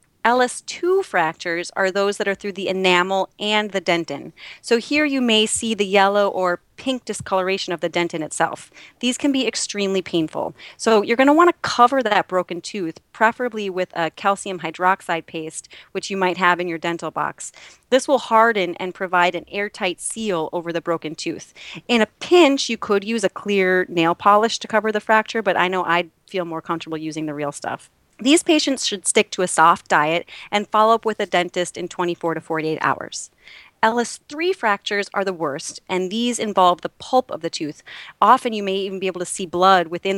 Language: English